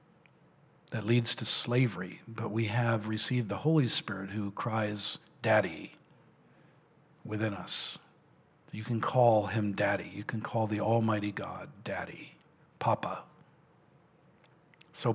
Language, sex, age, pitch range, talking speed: English, male, 50-69, 110-155 Hz, 120 wpm